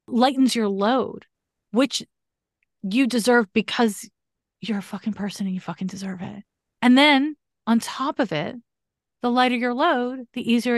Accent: American